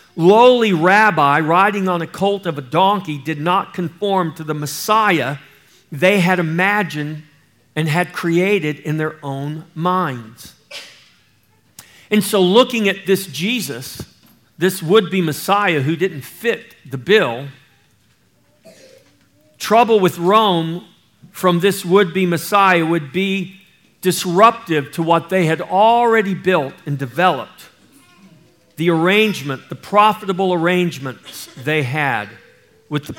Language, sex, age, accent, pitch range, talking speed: English, male, 50-69, American, 140-185 Hz, 120 wpm